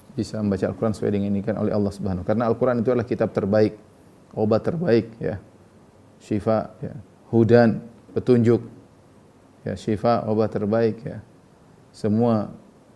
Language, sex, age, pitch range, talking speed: Indonesian, male, 30-49, 105-120 Hz, 130 wpm